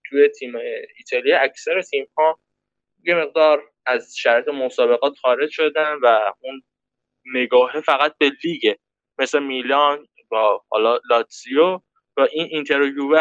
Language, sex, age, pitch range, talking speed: Persian, male, 10-29, 125-175 Hz, 125 wpm